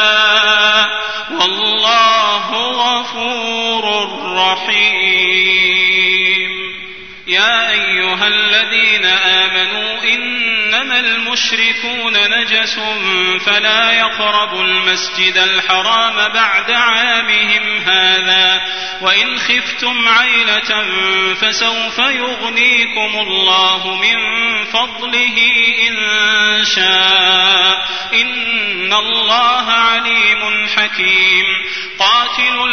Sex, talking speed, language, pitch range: male, 60 wpm, Arabic, 190-230 Hz